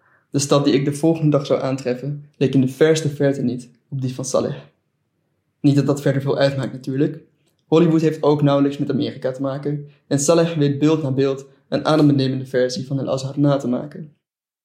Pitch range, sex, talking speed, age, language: 135-150 Hz, male, 195 wpm, 20-39, Dutch